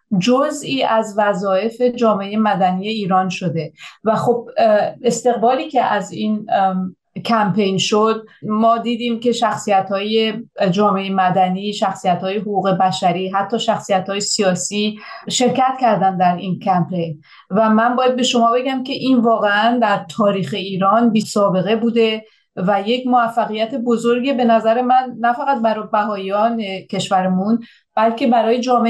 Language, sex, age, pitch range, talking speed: Persian, female, 30-49, 195-235 Hz, 135 wpm